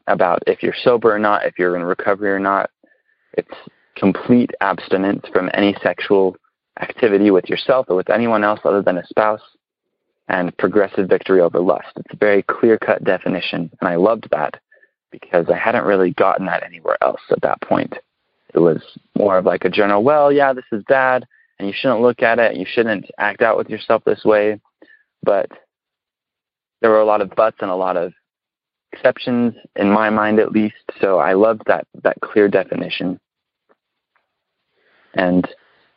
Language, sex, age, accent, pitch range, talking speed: English, male, 20-39, American, 95-110 Hz, 175 wpm